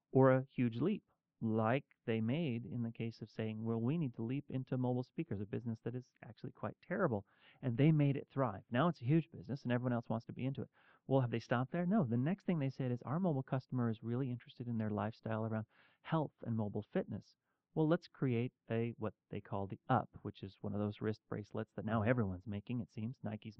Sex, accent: male, American